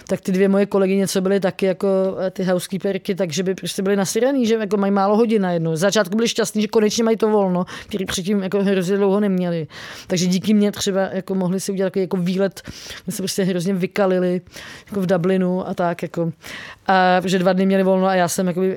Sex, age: female, 20-39